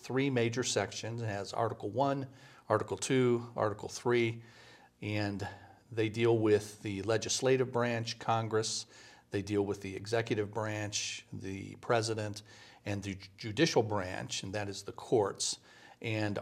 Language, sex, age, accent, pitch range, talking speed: English, male, 40-59, American, 105-125 Hz, 135 wpm